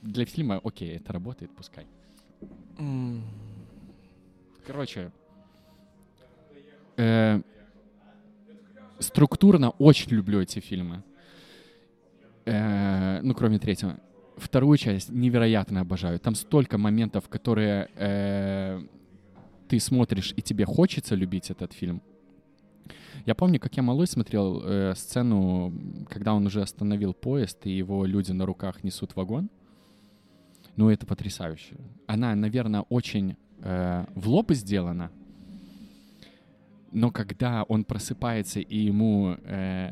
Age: 20-39